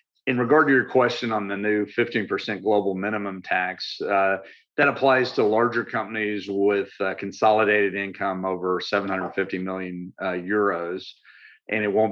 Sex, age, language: male, 40-59, English